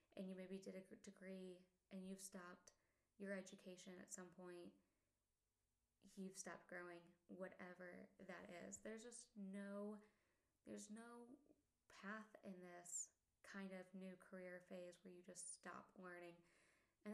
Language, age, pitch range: English, 20-39, 185-210 Hz